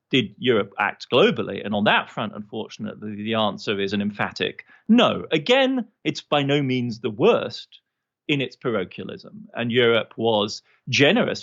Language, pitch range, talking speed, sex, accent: English, 105-135 Hz, 150 wpm, male, British